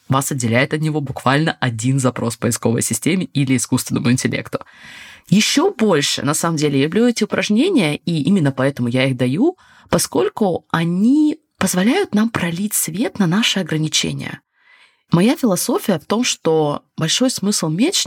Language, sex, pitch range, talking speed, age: Russian, female, 150-230 Hz, 145 wpm, 20-39